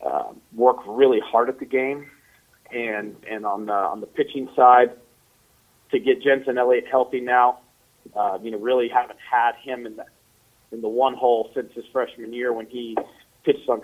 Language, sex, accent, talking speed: English, male, American, 180 wpm